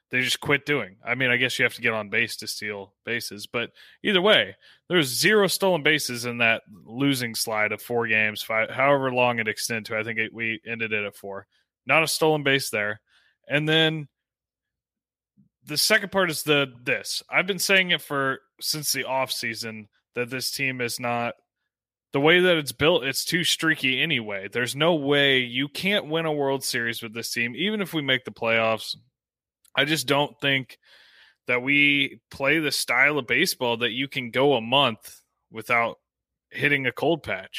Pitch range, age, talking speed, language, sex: 115-150 Hz, 20-39, 195 wpm, English, male